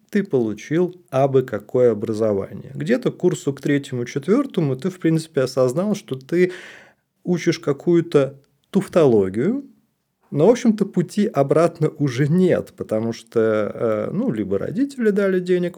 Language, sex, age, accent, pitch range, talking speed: Russian, male, 30-49, native, 115-155 Hz, 135 wpm